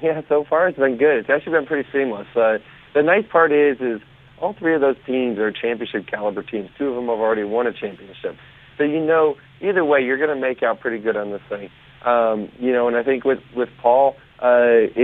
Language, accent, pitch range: English, American, 115-140 Hz